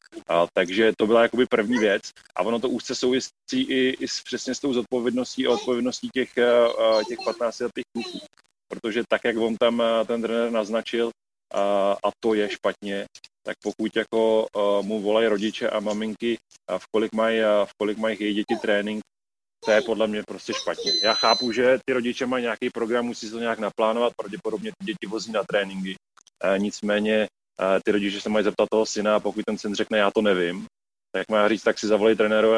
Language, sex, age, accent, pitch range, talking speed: Czech, male, 30-49, native, 105-115 Hz, 190 wpm